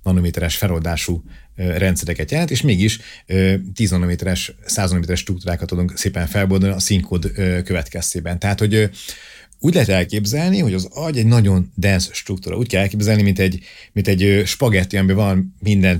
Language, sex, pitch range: Hungarian, male, 90-110 Hz